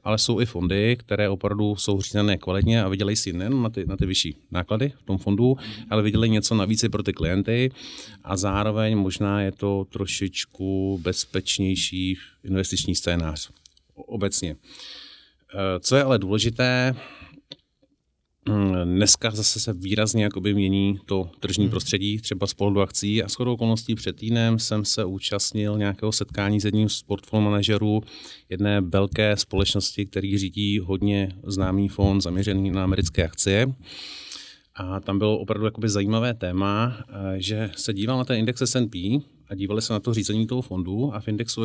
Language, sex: Czech, male